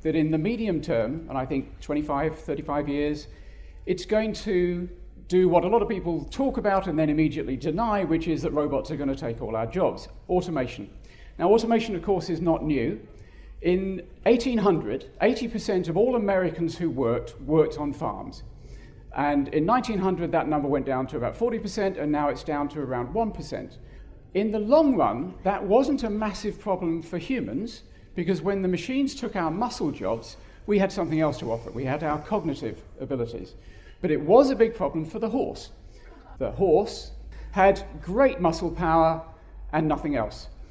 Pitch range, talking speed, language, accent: 145-200 Hz, 175 wpm, English, British